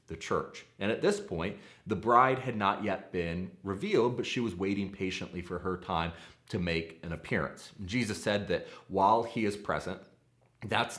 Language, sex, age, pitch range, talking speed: English, male, 30-49, 90-115 Hz, 180 wpm